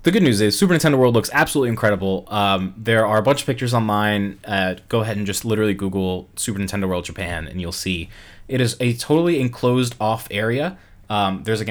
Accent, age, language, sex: American, 20-39, English, male